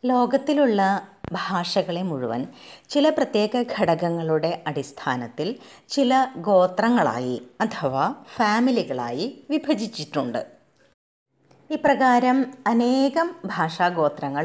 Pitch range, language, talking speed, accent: 155-255 Hz, Malayalam, 60 wpm, native